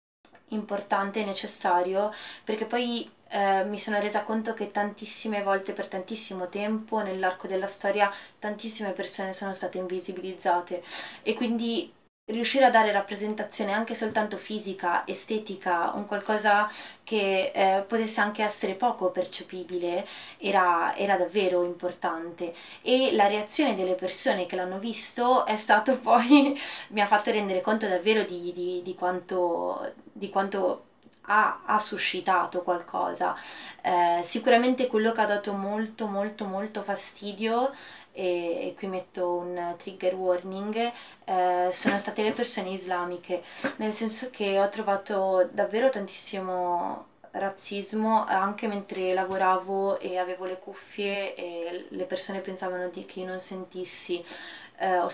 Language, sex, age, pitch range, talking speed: Italian, female, 20-39, 180-215 Hz, 135 wpm